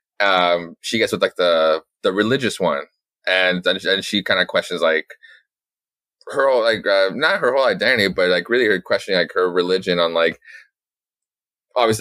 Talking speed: 185 wpm